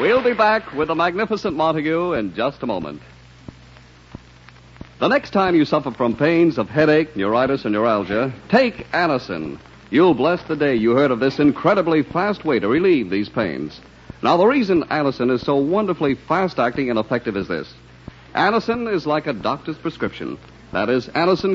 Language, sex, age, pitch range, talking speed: English, male, 60-79, 130-190 Hz, 170 wpm